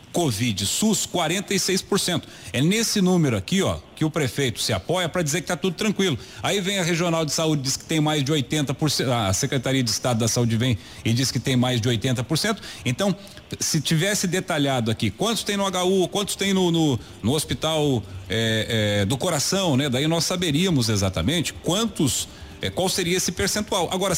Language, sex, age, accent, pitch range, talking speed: Portuguese, male, 40-59, Brazilian, 125-190 Hz, 190 wpm